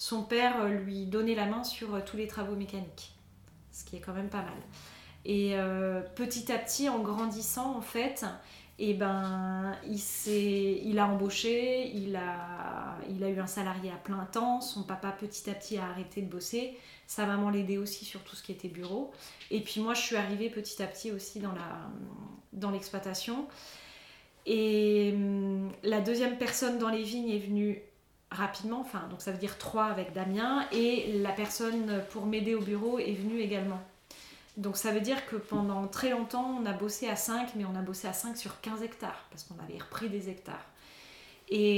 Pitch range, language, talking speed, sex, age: 195-230 Hz, French, 195 wpm, female, 20-39